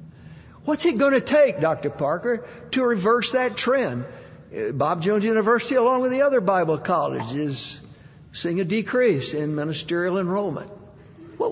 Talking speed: 145 wpm